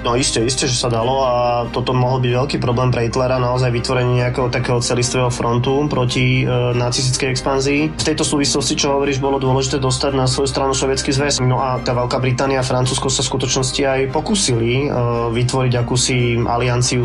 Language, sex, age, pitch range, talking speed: Slovak, male, 20-39, 120-135 Hz, 185 wpm